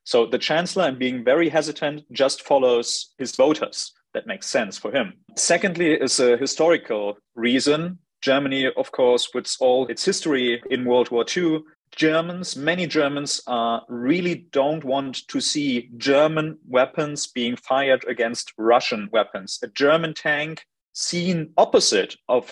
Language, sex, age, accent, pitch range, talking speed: English, male, 40-59, German, 120-155 Hz, 145 wpm